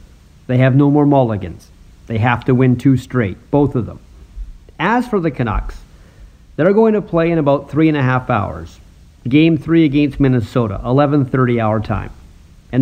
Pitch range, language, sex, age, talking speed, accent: 110-155 Hz, English, male, 50-69, 175 wpm, American